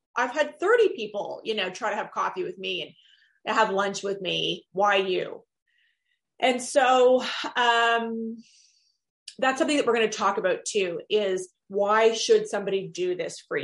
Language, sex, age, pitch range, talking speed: English, female, 30-49, 200-295 Hz, 165 wpm